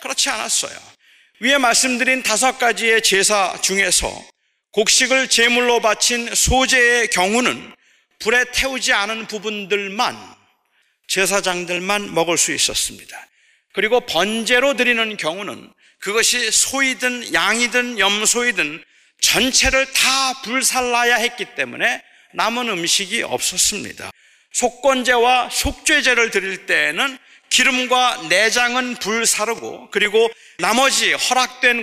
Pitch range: 210-255 Hz